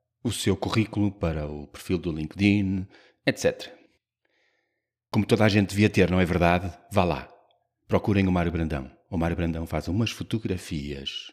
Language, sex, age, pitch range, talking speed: Portuguese, male, 30-49, 85-110 Hz, 160 wpm